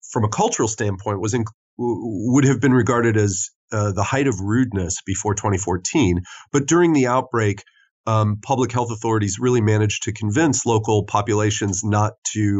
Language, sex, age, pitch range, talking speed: English, male, 30-49, 95-115 Hz, 160 wpm